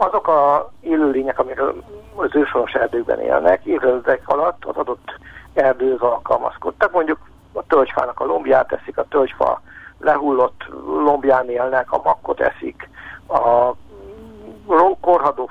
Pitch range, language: 125-155 Hz, Hungarian